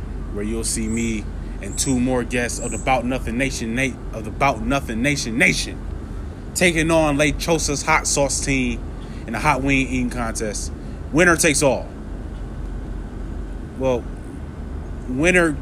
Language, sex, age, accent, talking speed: English, male, 20-39, American, 140 wpm